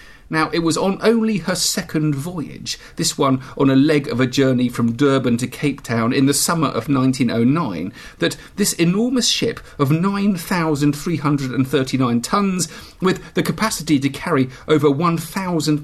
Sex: male